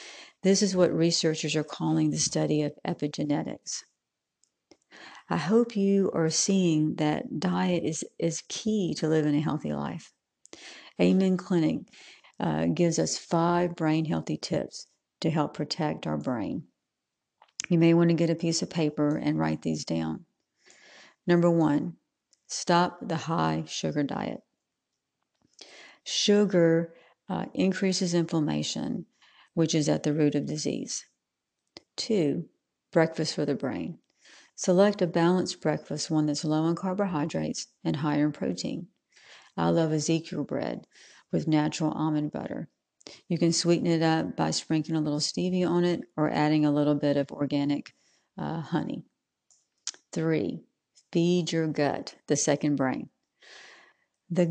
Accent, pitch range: American, 150-175 Hz